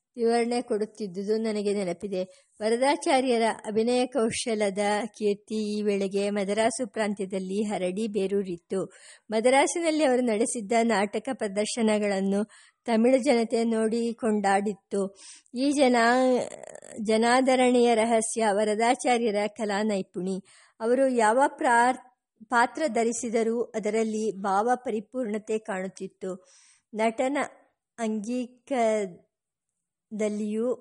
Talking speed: 80 wpm